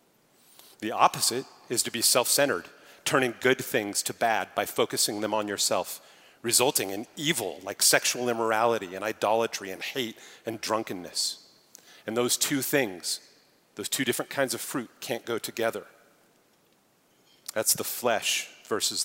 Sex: male